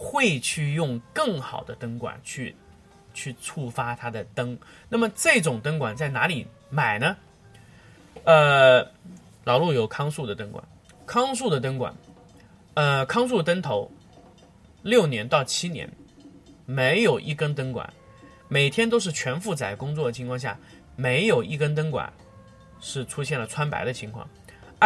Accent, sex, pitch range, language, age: native, male, 120-195 Hz, Chinese, 30-49